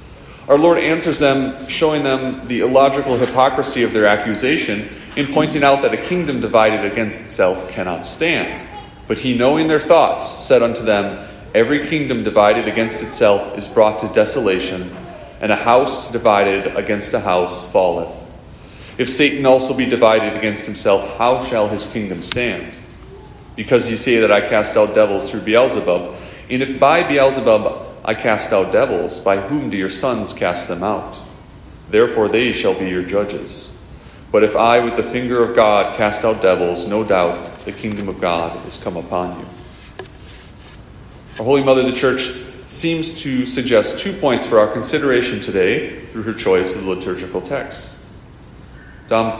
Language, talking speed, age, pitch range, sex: English, 165 wpm, 40-59, 100-130 Hz, male